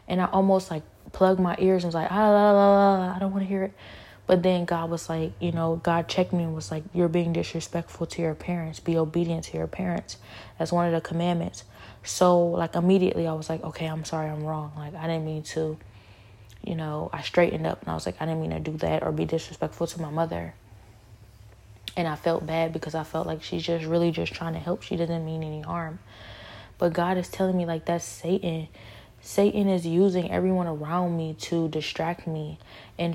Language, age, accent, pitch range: English, 20-39, American, 125-180 Hz